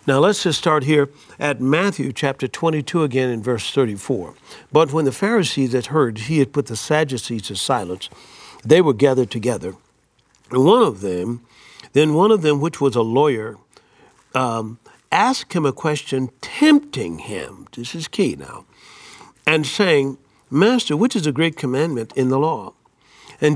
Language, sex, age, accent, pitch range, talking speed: English, male, 60-79, American, 120-160 Hz, 165 wpm